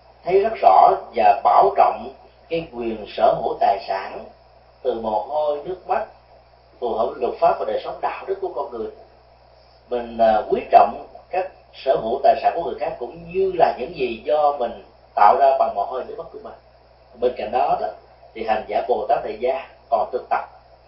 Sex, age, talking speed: male, 30-49, 205 wpm